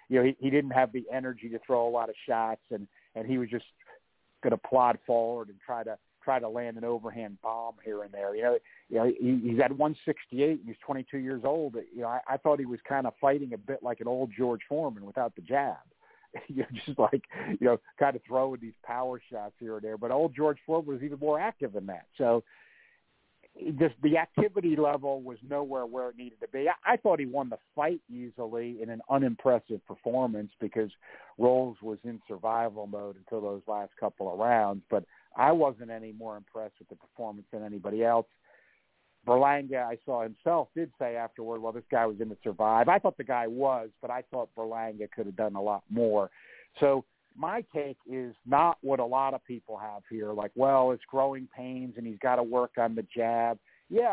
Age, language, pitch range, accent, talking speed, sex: 50-69, English, 115-140 Hz, American, 215 wpm, male